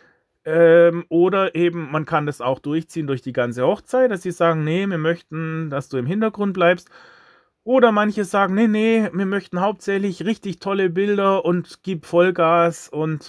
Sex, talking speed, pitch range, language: male, 165 wpm, 130-175 Hz, German